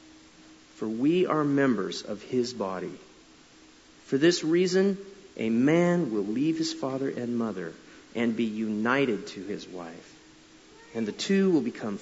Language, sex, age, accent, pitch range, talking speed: English, male, 40-59, American, 105-160 Hz, 145 wpm